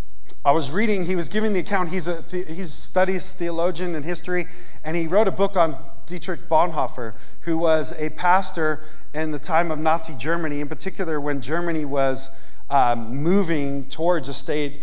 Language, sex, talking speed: English, male, 180 wpm